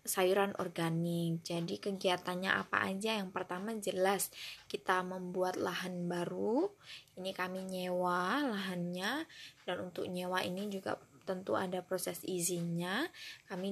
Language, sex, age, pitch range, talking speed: Indonesian, female, 20-39, 180-205 Hz, 120 wpm